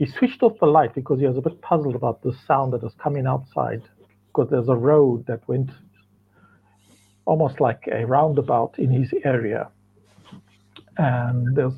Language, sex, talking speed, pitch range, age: English, male, 170 wpm, 100-140 Hz, 50-69